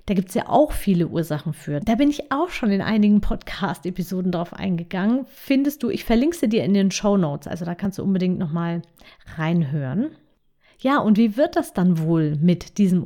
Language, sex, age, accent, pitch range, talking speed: German, female, 30-49, German, 175-250 Hz, 200 wpm